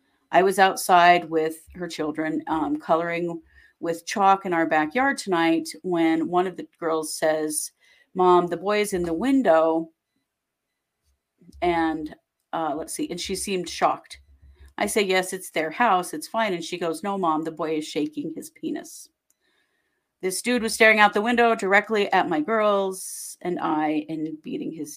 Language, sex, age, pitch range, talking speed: English, female, 40-59, 165-205 Hz, 170 wpm